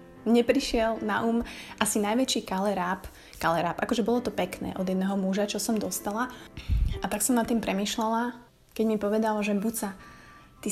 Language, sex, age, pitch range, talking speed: Slovak, female, 20-39, 190-220 Hz, 160 wpm